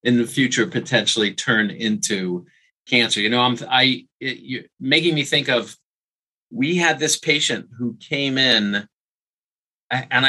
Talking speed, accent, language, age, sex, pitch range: 145 wpm, American, English, 30-49, male, 110-140 Hz